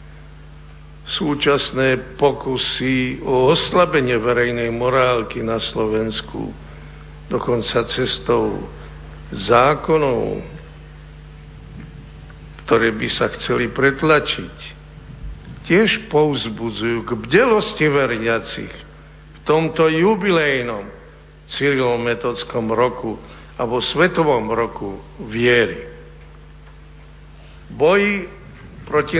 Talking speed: 65 wpm